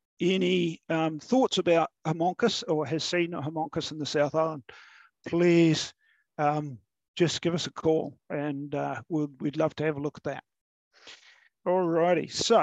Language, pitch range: English, 145-175 Hz